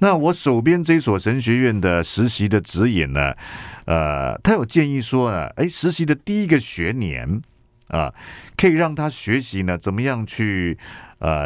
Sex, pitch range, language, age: male, 85-120 Hz, Chinese, 50-69